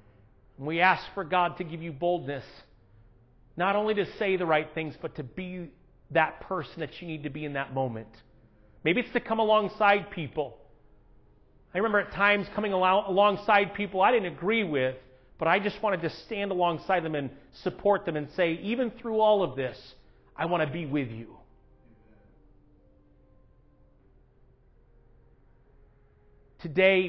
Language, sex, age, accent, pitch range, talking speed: English, male, 40-59, American, 140-185 Hz, 155 wpm